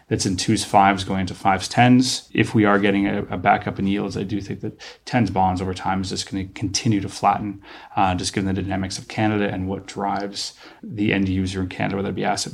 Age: 30-49